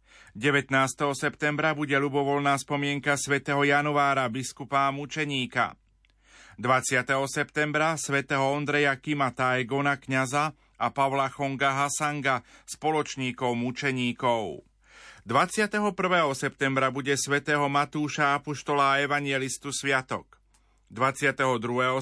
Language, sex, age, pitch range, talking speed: Slovak, male, 40-59, 130-150 Hz, 85 wpm